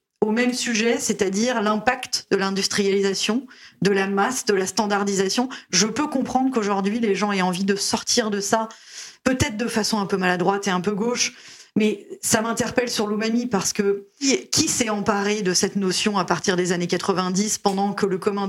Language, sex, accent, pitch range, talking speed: French, female, French, 195-240 Hz, 185 wpm